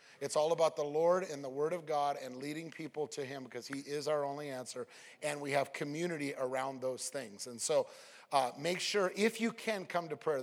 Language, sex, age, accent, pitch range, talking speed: English, male, 30-49, American, 135-165 Hz, 225 wpm